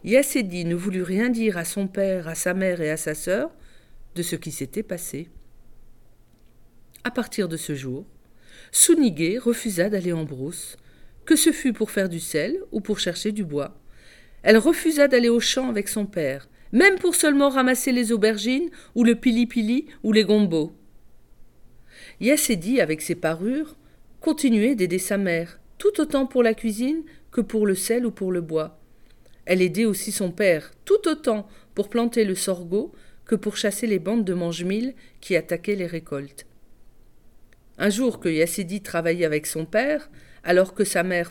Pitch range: 155-230 Hz